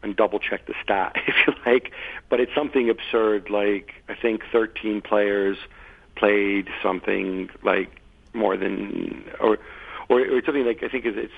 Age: 40-59